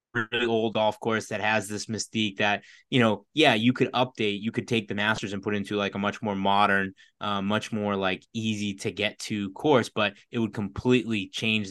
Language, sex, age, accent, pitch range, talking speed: English, male, 20-39, American, 105-125 Hz, 215 wpm